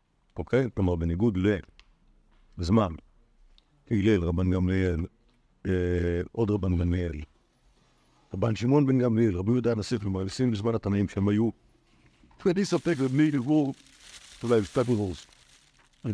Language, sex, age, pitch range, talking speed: Hebrew, male, 60-79, 100-150 Hz, 115 wpm